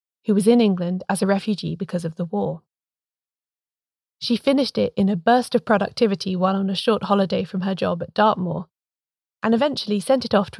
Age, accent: 20-39, British